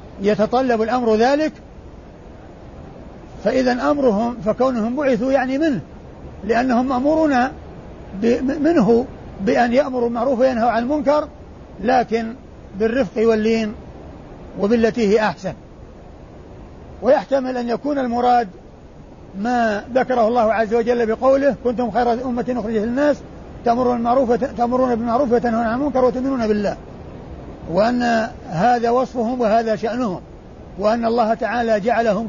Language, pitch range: Arabic, 220-255 Hz